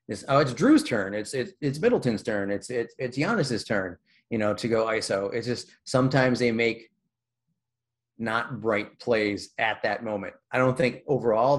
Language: English